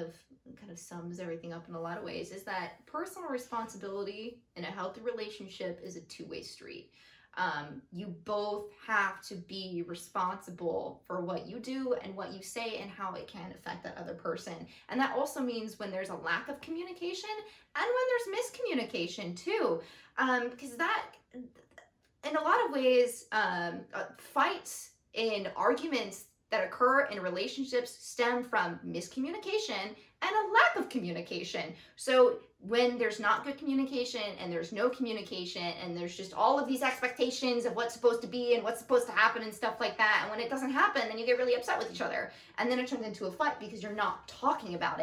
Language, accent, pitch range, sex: English, American, 190-260 Hz, female